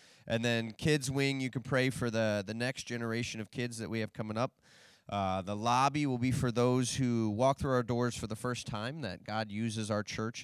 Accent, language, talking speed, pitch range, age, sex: American, English, 230 wpm, 105-130 Hz, 20-39, male